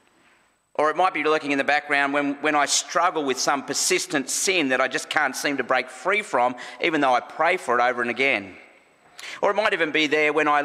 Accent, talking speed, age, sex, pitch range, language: Australian, 235 wpm, 40-59, male, 135-195 Hz, English